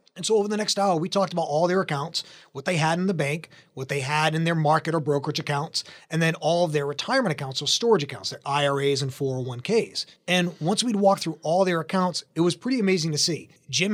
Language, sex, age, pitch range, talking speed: English, male, 30-49, 150-190 Hz, 240 wpm